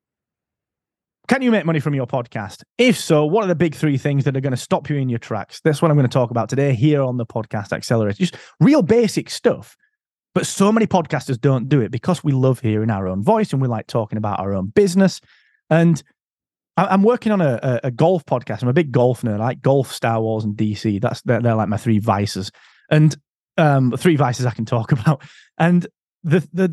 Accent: British